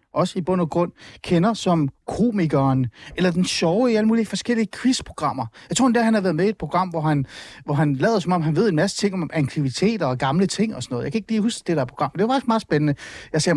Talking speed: 270 wpm